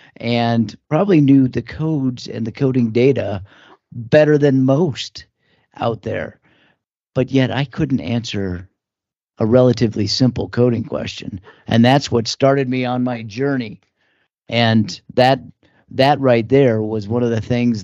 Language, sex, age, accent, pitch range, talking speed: English, male, 40-59, American, 110-130 Hz, 140 wpm